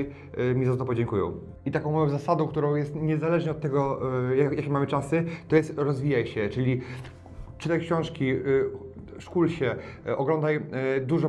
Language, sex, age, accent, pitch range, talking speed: Polish, male, 30-49, native, 135-155 Hz, 155 wpm